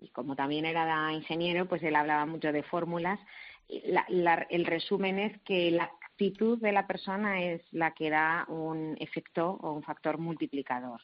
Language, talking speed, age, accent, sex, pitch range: Spanish, 175 wpm, 30-49, Spanish, female, 150-180 Hz